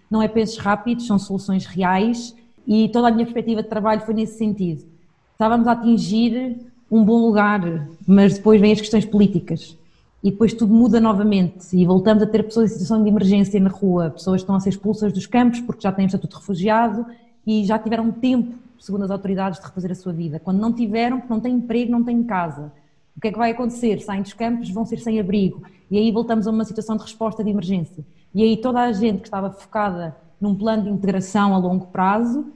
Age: 20-39